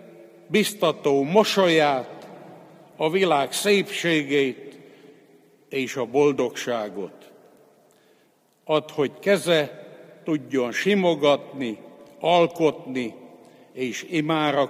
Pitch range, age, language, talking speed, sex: 135-195 Hz, 60-79, Hungarian, 65 wpm, male